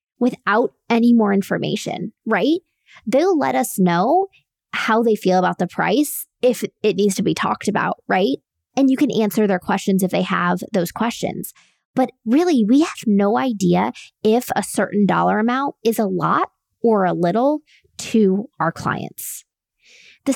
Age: 20-39